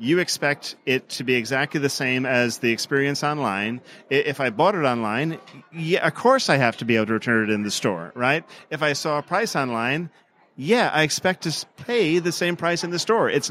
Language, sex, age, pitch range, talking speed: English, male, 40-59, 120-145 Hz, 220 wpm